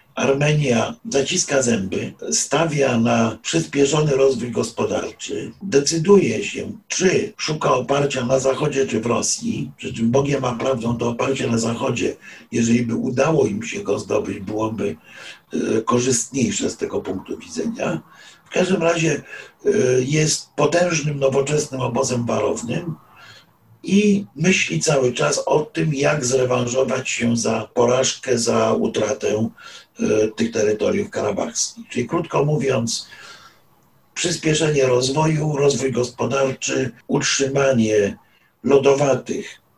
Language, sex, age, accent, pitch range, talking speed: Polish, male, 50-69, native, 125-165 Hz, 110 wpm